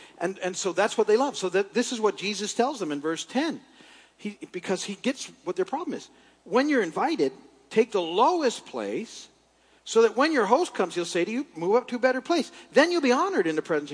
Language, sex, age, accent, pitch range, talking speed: English, male, 50-69, American, 155-255 Hz, 240 wpm